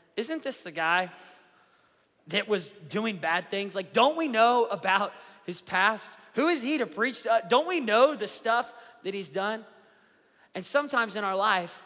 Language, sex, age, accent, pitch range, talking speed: English, male, 30-49, American, 185-245 Hz, 180 wpm